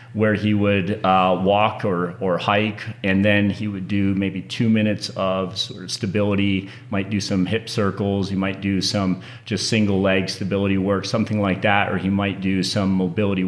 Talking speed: 190 wpm